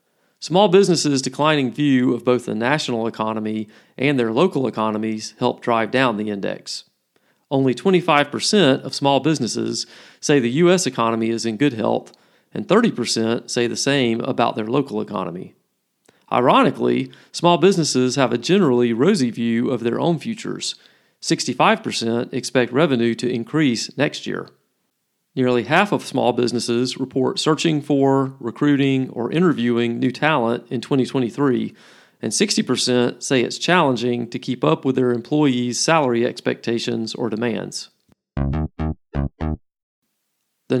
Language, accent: English, American